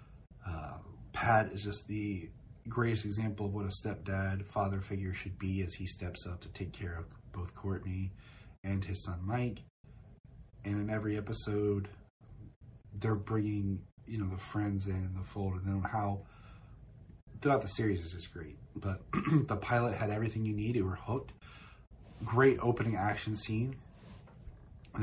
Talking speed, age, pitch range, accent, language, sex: 160 wpm, 30-49, 100-120 Hz, American, English, male